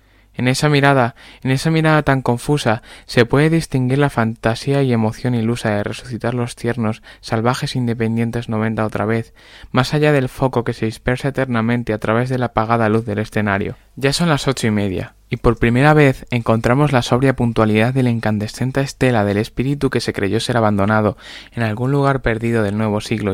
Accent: Spanish